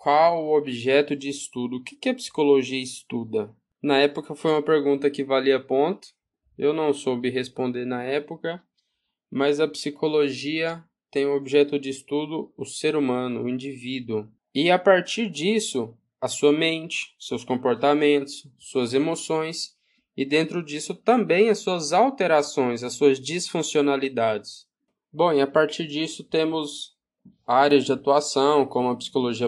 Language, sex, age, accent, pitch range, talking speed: Portuguese, male, 10-29, Brazilian, 125-150 Hz, 145 wpm